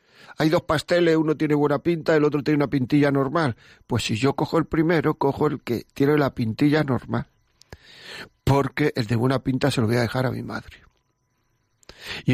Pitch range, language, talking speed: 125-150 Hz, Spanish, 195 wpm